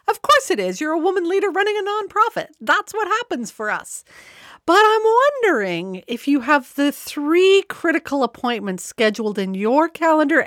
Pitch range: 205-320 Hz